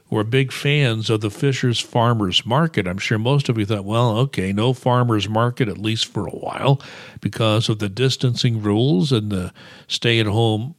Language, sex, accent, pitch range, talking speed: English, male, American, 110-140 Hz, 185 wpm